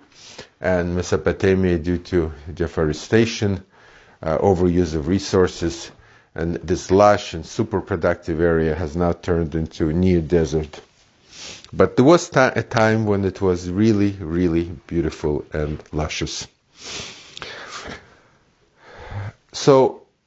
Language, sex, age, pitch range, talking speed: English, male, 50-69, 85-110 Hz, 115 wpm